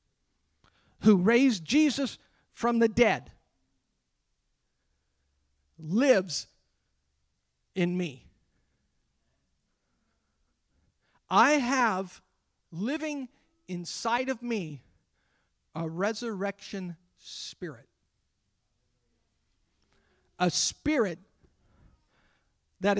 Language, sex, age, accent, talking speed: English, male, 50-69, American, 55 wpm